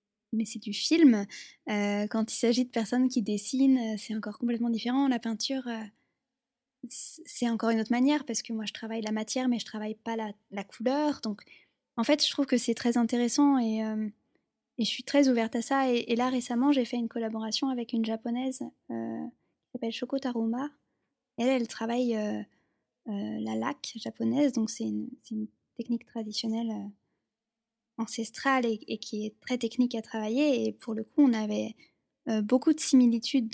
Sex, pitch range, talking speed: female, 225-260 Hz, 190 wpm